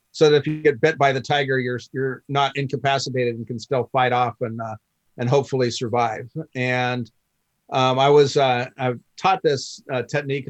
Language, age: English, 50-69